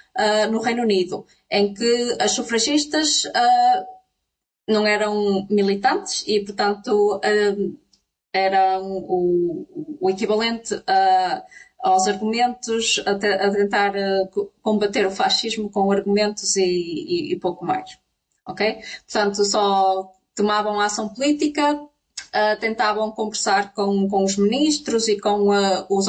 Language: Portuguese